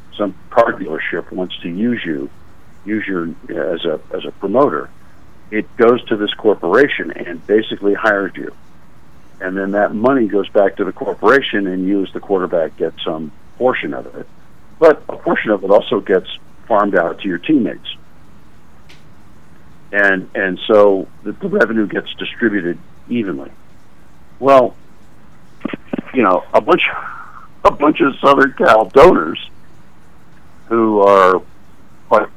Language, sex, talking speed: English, male, 145 wpm